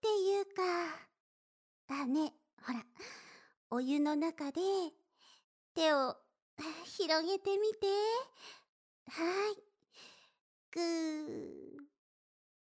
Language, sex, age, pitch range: Japanese, male, 50-69, 300-395 Hz